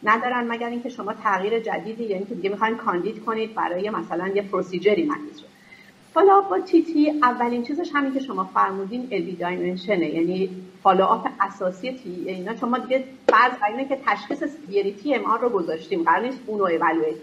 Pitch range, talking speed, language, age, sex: 195-280 Hz, 170 wpm, Persian, 40-59, female